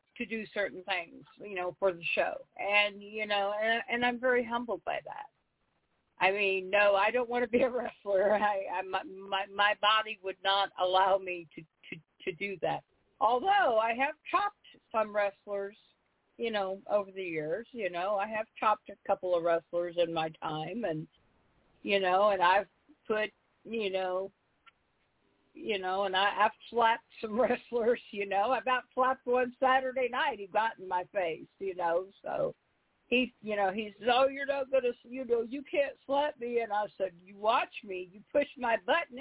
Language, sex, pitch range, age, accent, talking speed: English, female, 190-250 Hz, 50-69, American, 190 wpm